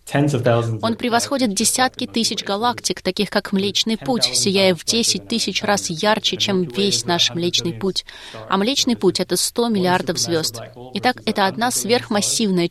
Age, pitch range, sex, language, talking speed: 20-39, 175-230 Hz, female, Russian, 150 wpm